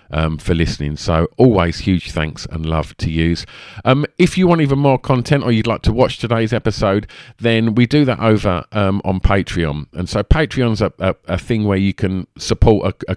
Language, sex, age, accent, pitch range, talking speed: English, male, 40-59, British, 90-115 Hz, 205 wpm